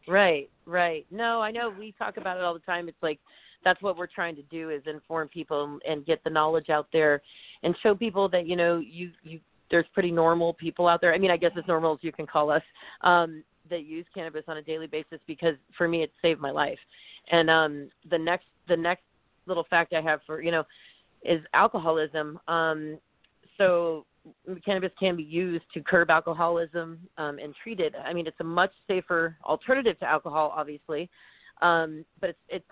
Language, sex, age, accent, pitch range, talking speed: English, female, 30-49, American, 160-185 Hz, 205 wpm